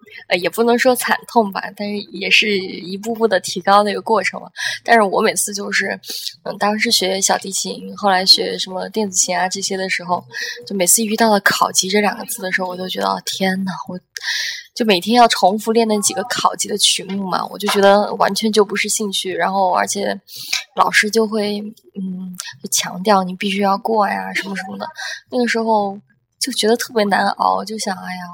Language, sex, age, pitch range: Chinese, female, 20-39, 190-225 Hz